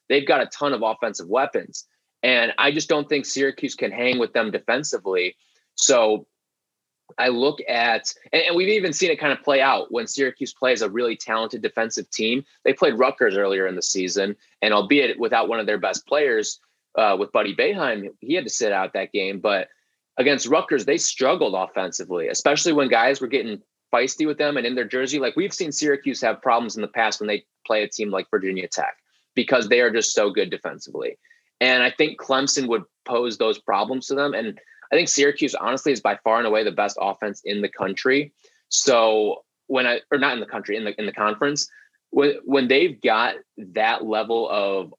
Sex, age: male, 30-49